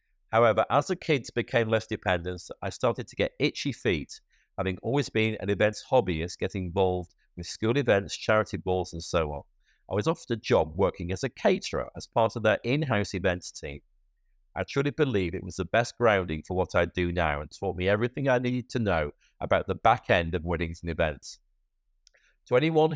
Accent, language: British, English